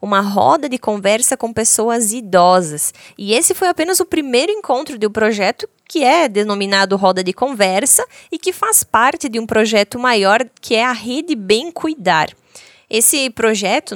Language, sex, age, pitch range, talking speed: Portuguese, female, 20-39, 200-285 Hz, 165 wpm